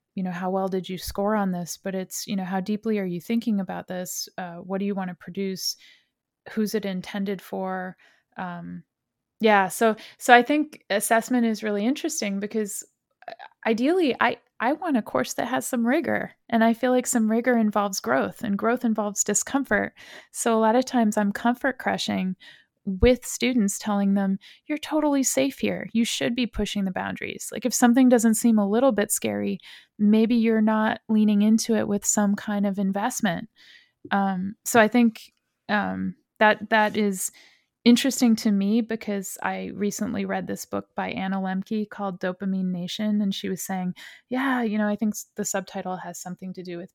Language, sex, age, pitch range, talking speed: English, female, 20-39, 190-230 Hz, 185 wpm